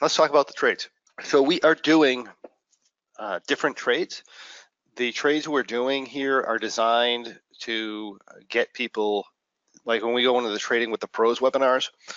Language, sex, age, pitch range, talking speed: English, male, 40-59, 105-125 Hz, 165 wpm